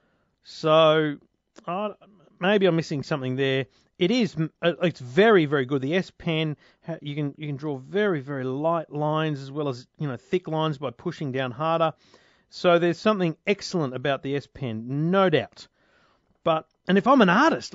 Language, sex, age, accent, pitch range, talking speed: English, male, 40-59, Australian, 130-180 Hz, 165 wpm